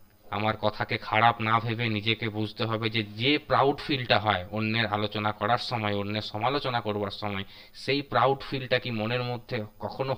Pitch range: 105-115 Hz